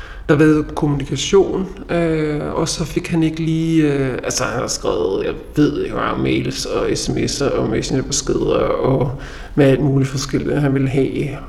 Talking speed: 170 wpm